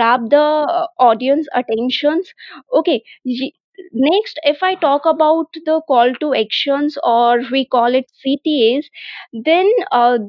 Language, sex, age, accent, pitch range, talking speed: English, female, 20-39, Indian, 245-315 Hz, 125 wpm